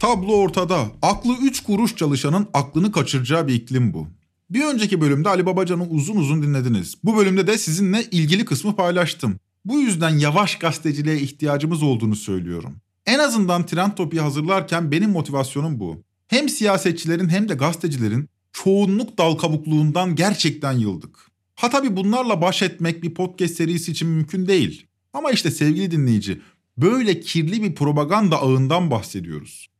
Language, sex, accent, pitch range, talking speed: Turkish, male, native, 135-195 Hz, 145 wpm